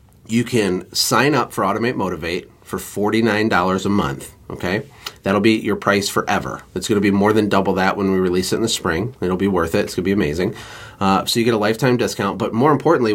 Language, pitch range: English, 100-120 Hz